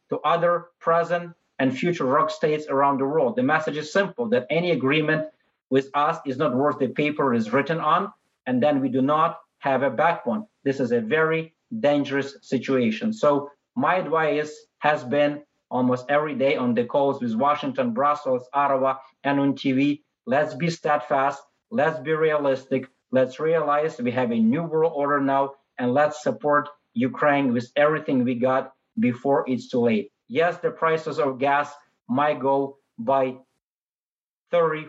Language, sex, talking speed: English, male, 165 wpm